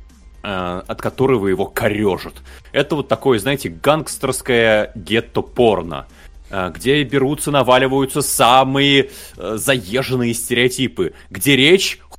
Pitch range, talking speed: 110-155 Hz, 90 wpm